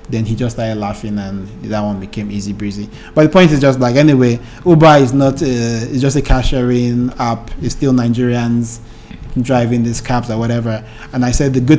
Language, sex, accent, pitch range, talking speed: English, male, Nigerian, 110-125 Hz, 205 wpm